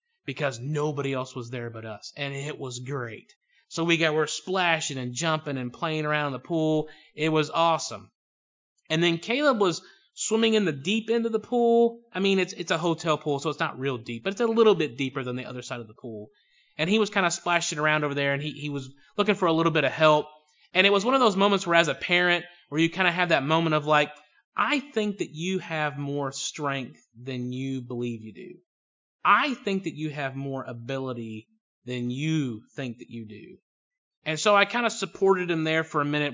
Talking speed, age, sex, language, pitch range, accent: 230 wpm, 30-49, male, English, 140-175 Hz, American